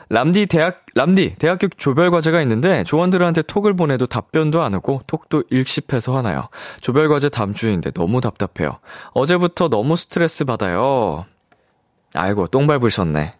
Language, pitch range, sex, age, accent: Korean, 95-155 Hz, male, 20-39, native